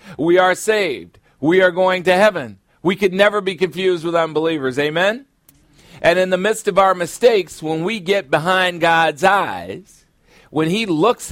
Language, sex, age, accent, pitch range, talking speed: English, male, 50-69, American, 145-185 Hz, 170 wpm